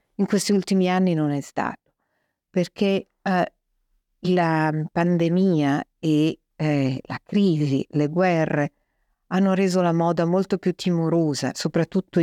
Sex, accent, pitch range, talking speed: female, native, 155-185 Hz, 125 wpm